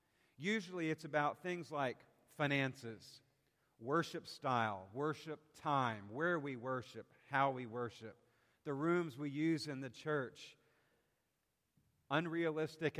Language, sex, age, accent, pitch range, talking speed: English, male, 50-69, American, 120-155 Hz, 110 wpm